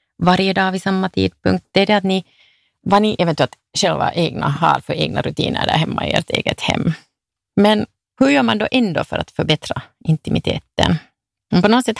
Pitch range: 155-205 Hz